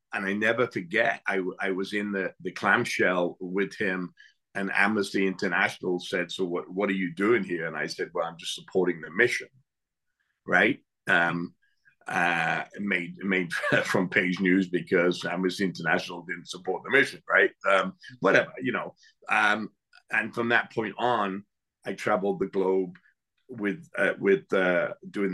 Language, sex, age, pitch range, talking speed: English, male, 50-69, 90-100 Hz, 160 wpm